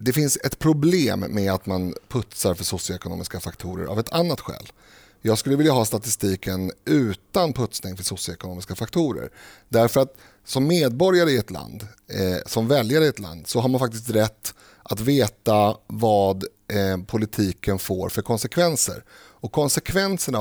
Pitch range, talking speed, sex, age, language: 95-130 Hz, 155 wpm, male, 30-49, Swedish